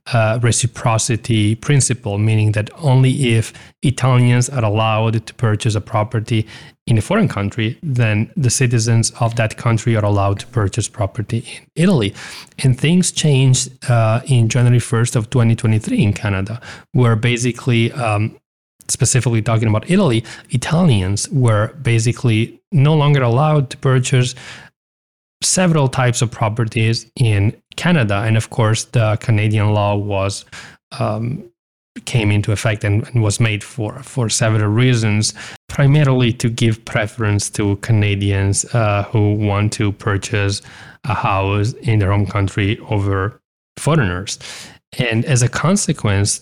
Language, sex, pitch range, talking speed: English, male, 105-130 Hz, 135 wpm